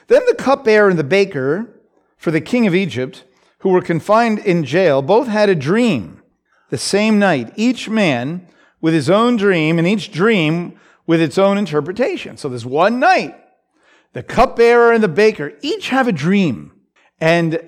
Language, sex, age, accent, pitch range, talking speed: English, male, 50-69, American, 160-230 Hz, 170 wpm